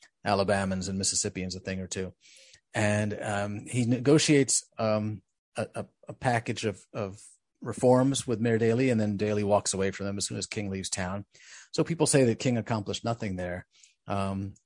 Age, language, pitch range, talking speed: 30-49, English, 100-120 Hz, 180 wpm